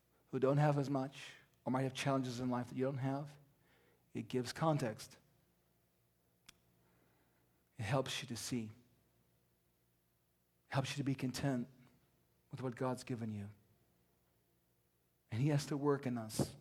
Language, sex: English, male